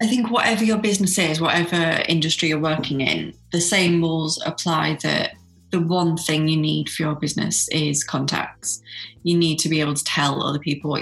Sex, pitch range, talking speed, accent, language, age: female, 150-175 Hz, 195 wpm, British, English, 20-39